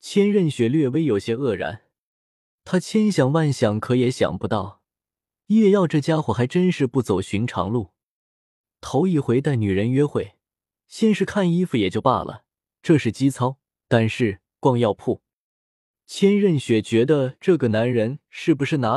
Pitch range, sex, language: 105-160 Hz, male, Chinese